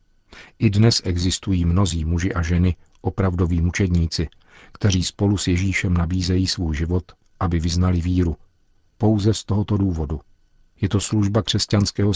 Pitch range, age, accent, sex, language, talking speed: 85-100 Hz, 50-69, native, male, Czech, 135 wpm